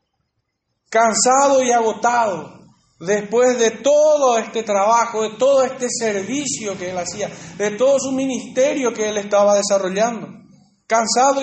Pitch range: 205-260 Hz